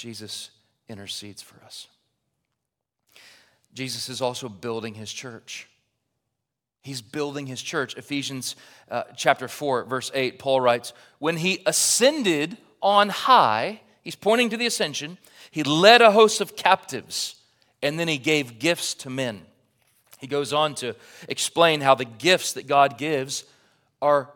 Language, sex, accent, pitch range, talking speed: English, male, American, 115-155 Hz, 140 wpm